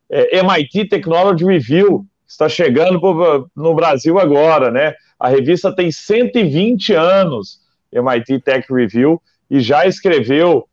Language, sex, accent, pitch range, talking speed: Portuguese, male, Brazilian, 135-185 Hz, 125 wpm